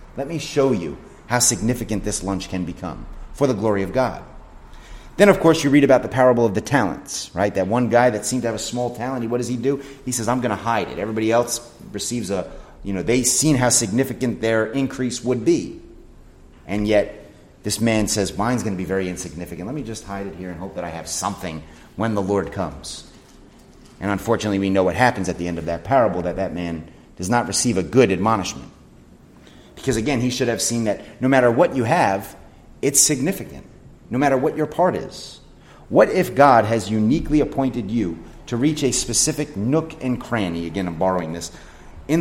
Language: English